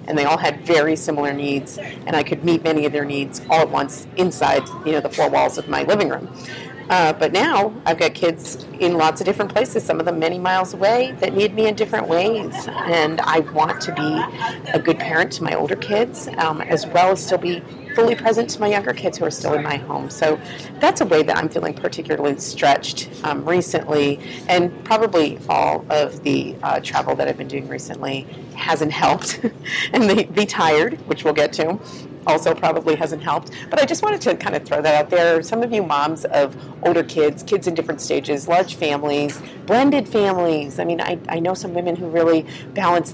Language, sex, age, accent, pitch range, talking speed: English, female, 40-59, American, 150-185 Hz, 215 wpm